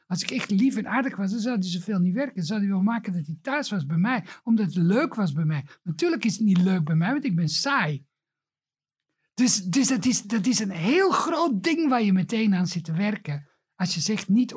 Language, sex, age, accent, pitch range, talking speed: Dutch, male, 60-79, Dutch, 165-235 Hz, 250 wpm